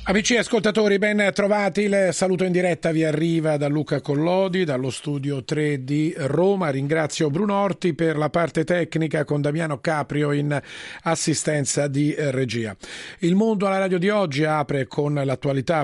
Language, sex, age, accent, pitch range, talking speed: Italian, male, 40-59, native, 145-170 Hz, 160 wpm